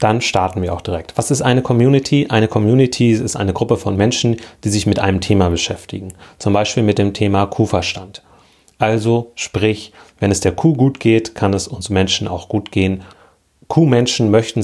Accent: German